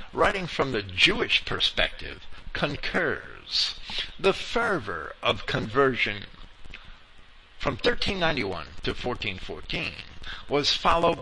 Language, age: English, 60-79